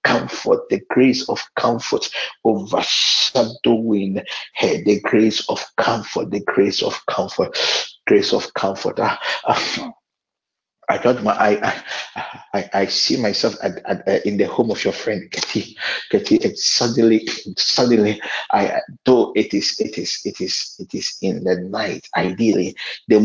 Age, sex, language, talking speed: 50-69, male, English, 140 wpm